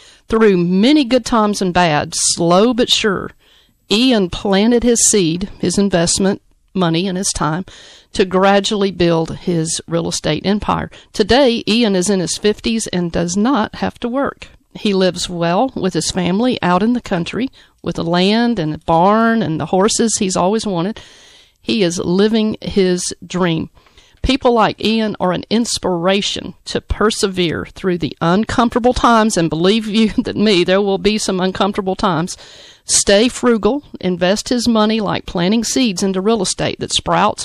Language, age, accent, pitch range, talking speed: English, 50-69, American, 175-220 Hz, 160 wpm